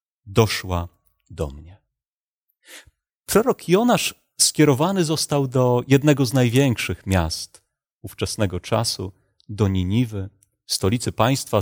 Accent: native